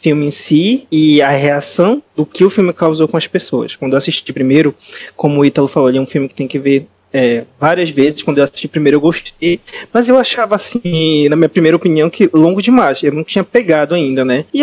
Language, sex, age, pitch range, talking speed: Portuguese, male, 20-39, 140-175 Hz, 230 wpm